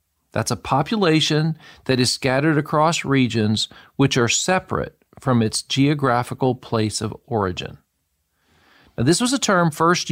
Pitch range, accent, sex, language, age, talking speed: 115-155 Hz, American, male, English, 40-59, 135 wpm